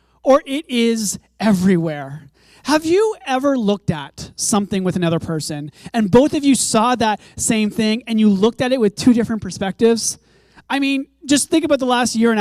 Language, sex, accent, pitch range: English, male, American, 200-275 Hz